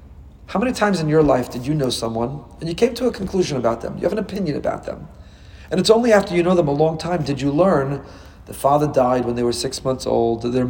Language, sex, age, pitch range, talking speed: English, male, 40-59, 125-165 Hz, 265 wpm